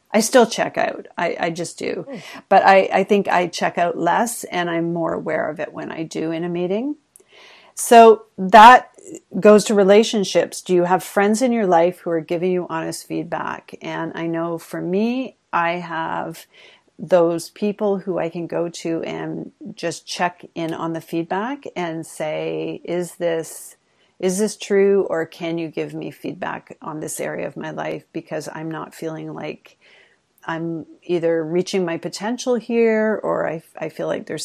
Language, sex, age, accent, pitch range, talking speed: English, female, 40-59, American, 170-210 Hz, 180 wpm